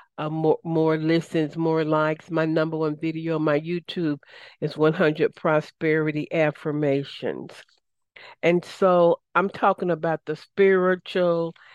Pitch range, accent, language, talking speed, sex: 155-170 Hz, American, English, 125 wpm, female